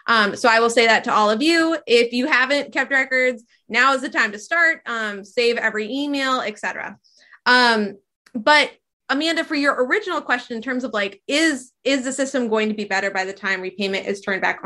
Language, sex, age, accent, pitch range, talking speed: English, female, 20-39, American, 215-285 Hz, 215 wpm